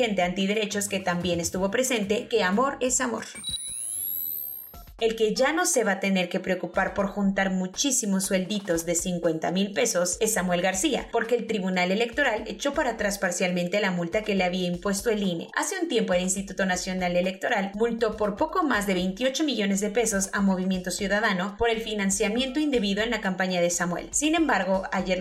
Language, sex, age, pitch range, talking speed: Spanish, female, 20-39, 185-235 Hz, 185 wpm